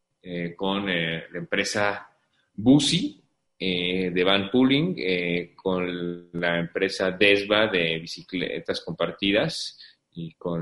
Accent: Mexican